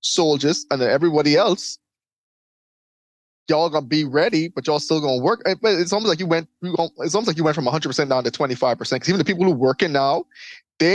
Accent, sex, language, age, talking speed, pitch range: American, male, English, 20-39, 210 wpm, 145-190 Hz